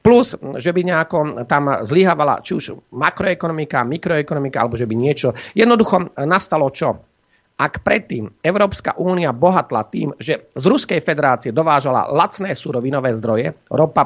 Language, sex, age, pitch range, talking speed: Slovak, male, 40-59, 130-185 Hz, 135 wpm